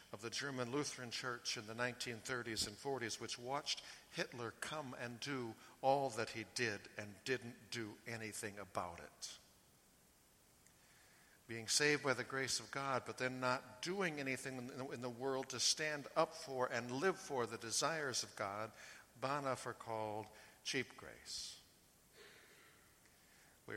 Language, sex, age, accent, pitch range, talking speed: English, male, 60-79, American, 110-140 Hz, 145 wpm